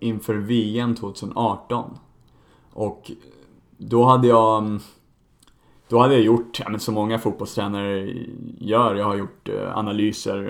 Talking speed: 120 wpm